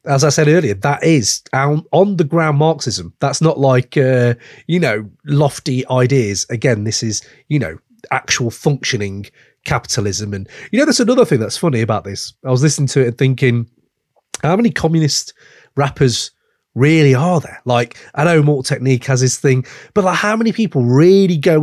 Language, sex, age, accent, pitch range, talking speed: English, male, 30-49, British, 125-165 Hz, 185 wpm